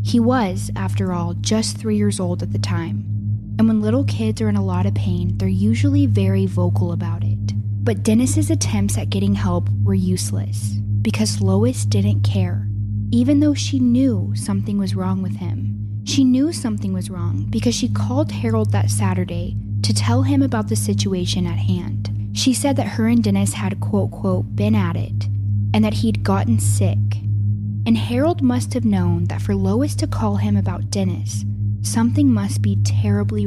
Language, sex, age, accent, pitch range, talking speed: English, female, 10-29, American, 100-105 Hz, 180 wpm